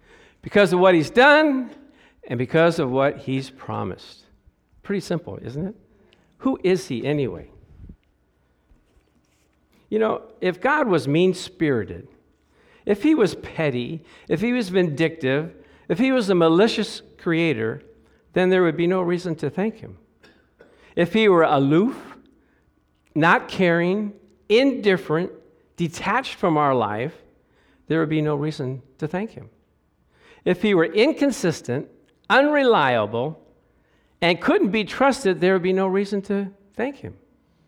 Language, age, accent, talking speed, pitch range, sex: English, 50-69, American, 135 wpm, 125-200 Hz, male